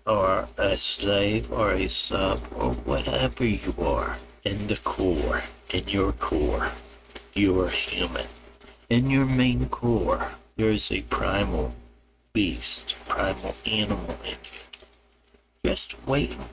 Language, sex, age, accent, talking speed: English, male, 60-79, American, 125 wpm